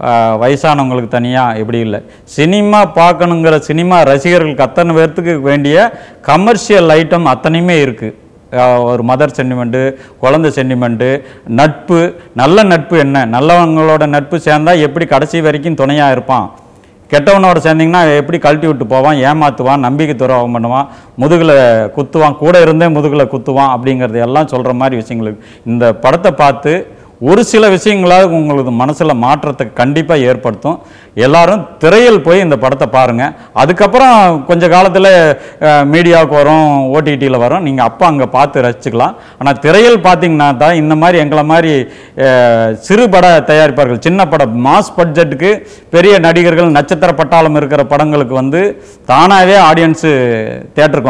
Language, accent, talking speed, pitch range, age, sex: Tamil, native, 125 wpm, 130-170 Hz, 50-69, male